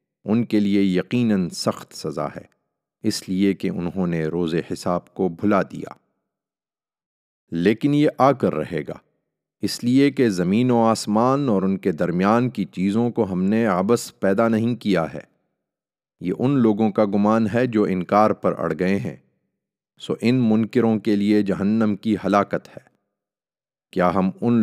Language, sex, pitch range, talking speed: Urdu, male, 95-120 Hz, 165 wpm